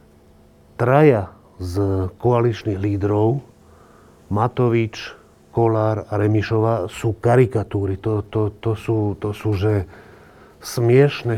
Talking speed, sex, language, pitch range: 80 wpm, male, Slovak, 100-125 Hz